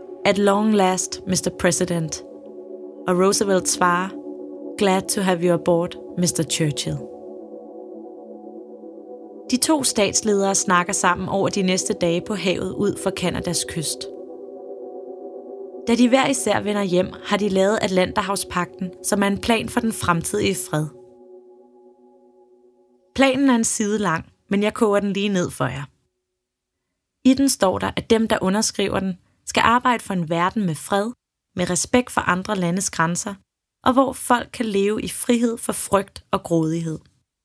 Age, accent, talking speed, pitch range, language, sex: 20-39, native, 150 wpm, 170-210 Hz, Danish, female